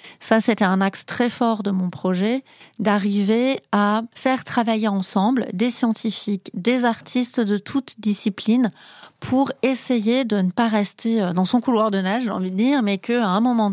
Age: 40-59